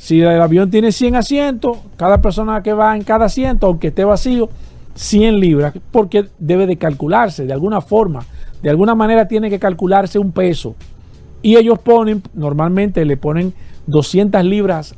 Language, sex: Spanish, male